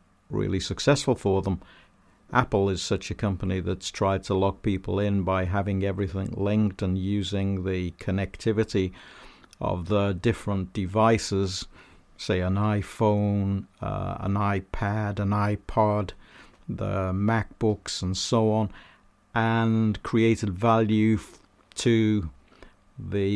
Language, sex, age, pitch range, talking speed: English, male, 50-69, 95-110 Hz, 115 wpm